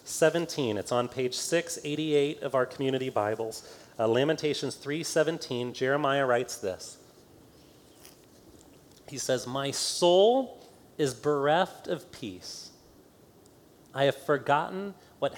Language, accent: English, American